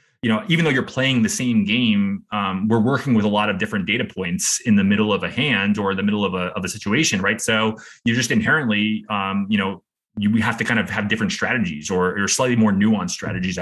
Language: English